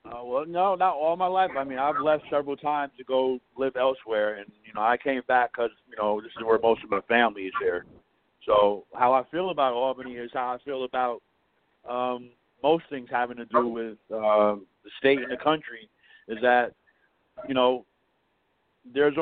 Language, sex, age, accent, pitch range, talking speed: English, male, 50-69, American, 120-145 Hz, 200 wpm